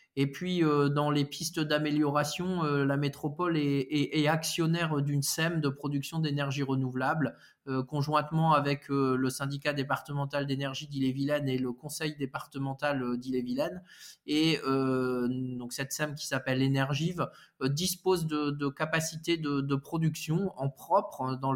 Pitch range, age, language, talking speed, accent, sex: 135-160 Hz, 20-39, French, 155 wpm, French, male